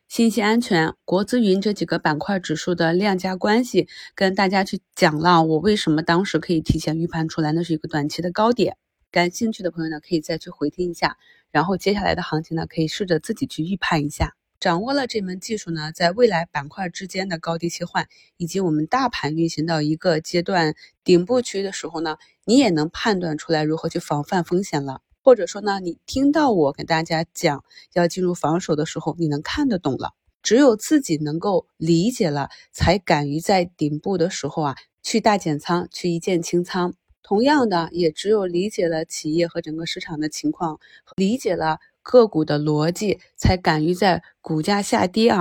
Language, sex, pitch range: Chinese, female, 160-195 Hz